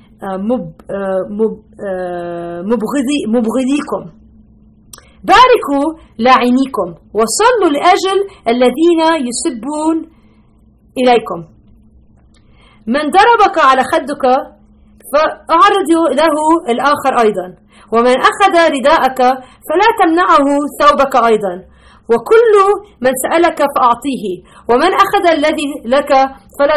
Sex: female